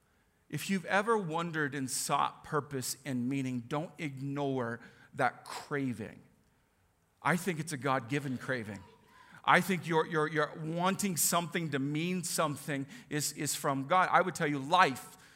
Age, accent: 40-59, American